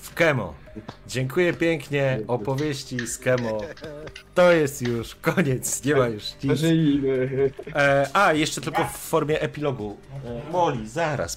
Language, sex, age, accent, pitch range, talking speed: Polish, male, 30-49, native, 95-135 Hz, 125 wpm